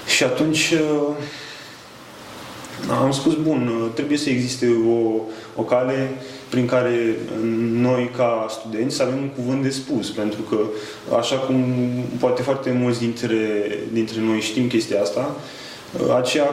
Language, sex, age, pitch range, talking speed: Romanian, male, 20-39, 115-135 Hz, 130 wpm